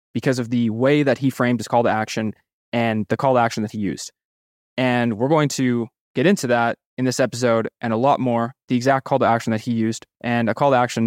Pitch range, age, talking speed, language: 115-135 Hz, 20-39, 250 wpm, English